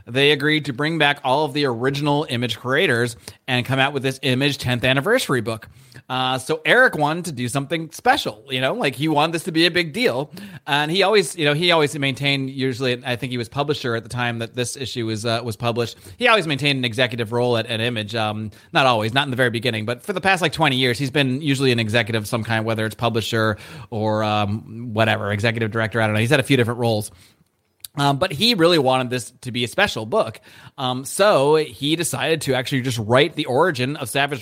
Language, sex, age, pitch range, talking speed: English, male, 30-49, 120-155 Hz, 235 wpm